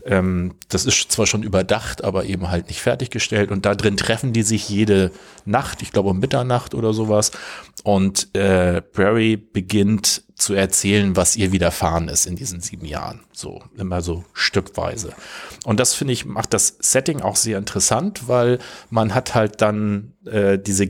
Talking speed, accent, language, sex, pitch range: 170 wpm, German, German, male, 95-115 Hz